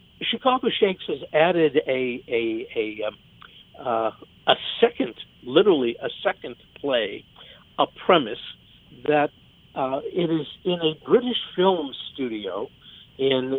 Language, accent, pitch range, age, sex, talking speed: English, American, 130-180 Hz, 60-79, male, 115 wpm